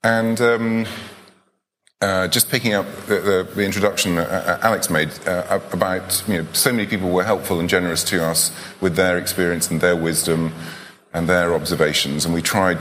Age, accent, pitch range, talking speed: 30-49, British, 85-100 Hz, 170 wpm